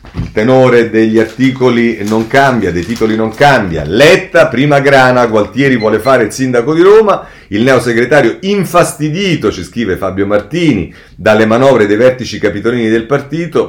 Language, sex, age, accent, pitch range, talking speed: Italian, male, 40-59, native, 100-130 Hz, 150 wpm